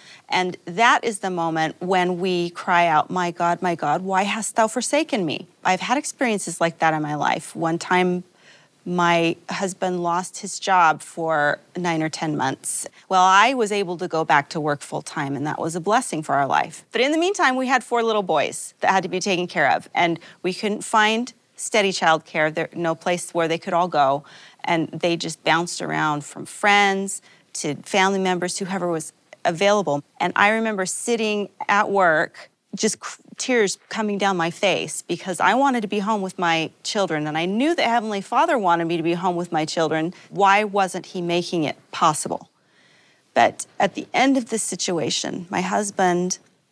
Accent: American